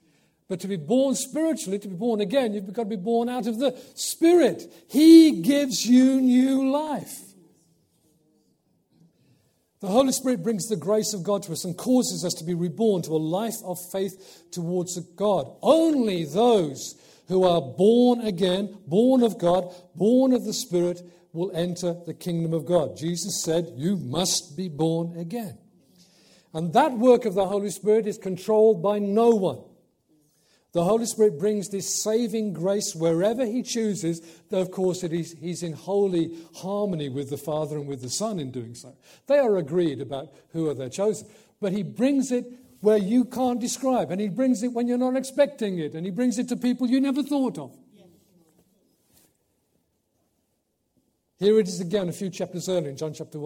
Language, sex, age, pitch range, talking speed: English, male, 50-69, 170-235 Hz, 180 wpm